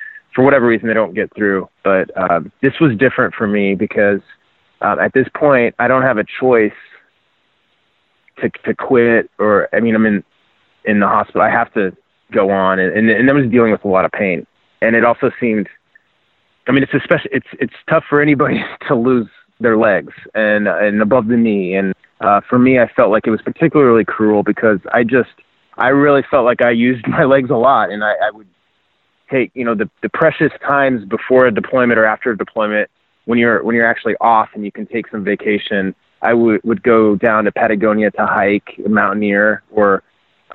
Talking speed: 205 wpm